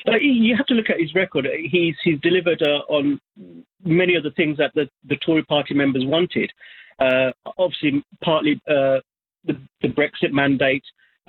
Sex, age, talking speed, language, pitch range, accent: male, 40-59, 170 wpm, Danish, 135-160 Hz, British